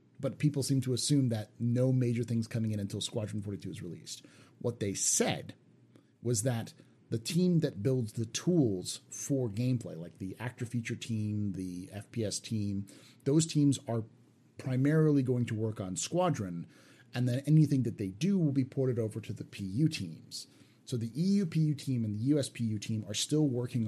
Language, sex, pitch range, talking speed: English, male, 105-140 Hz, 180 wpm